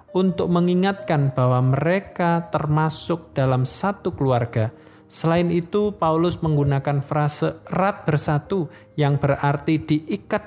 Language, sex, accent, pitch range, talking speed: Indonesian, male, native, 130-170 Hz, 105 wpm